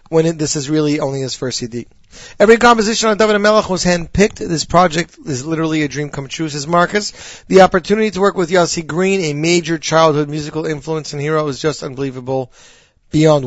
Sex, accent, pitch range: male, American, 145-185 Hz